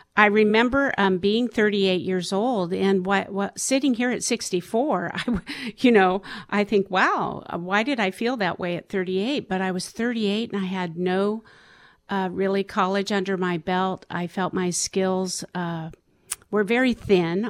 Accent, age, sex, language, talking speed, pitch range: American, 50-69, female, English, 170 wpm, 180-215 Hz